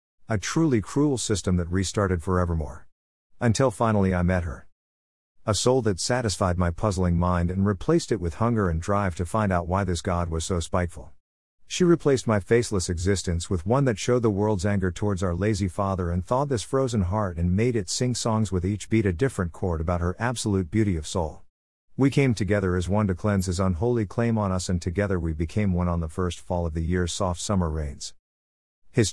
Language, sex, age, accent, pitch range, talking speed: English, male, 50-69, American, 85-110 Hz, 210 wpm